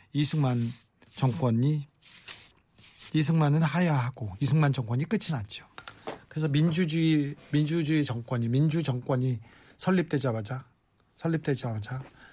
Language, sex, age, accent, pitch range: Korean, male, 40-59, native, 135-175 Hz